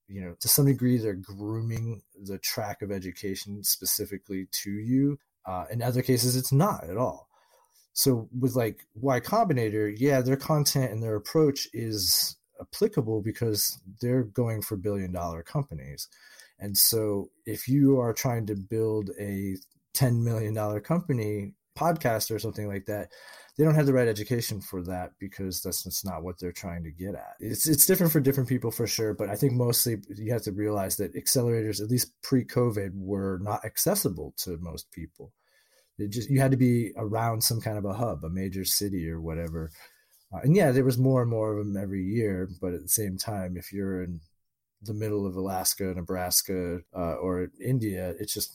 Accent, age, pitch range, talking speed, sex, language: American, 30-49, 95-125 Hz, 185 wpm, male, English